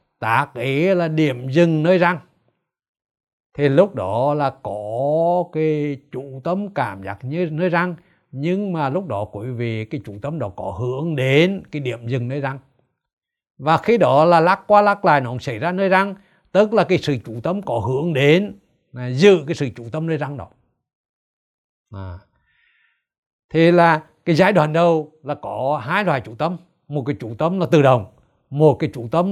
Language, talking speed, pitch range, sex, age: Vietnamese, 190 wpm, 130-175 Hz, male, 60-79